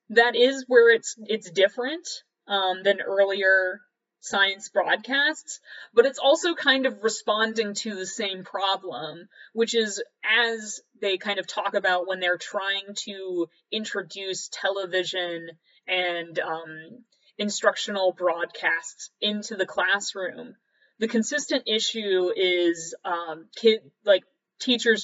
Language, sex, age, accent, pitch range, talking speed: English, female, 30-49, American, 180-225 Hz, 120 wpm